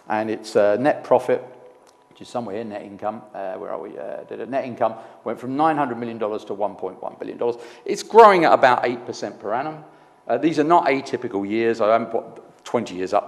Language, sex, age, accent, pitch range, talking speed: English, male, 50-69, British, 105-155 Hz, 215 wpm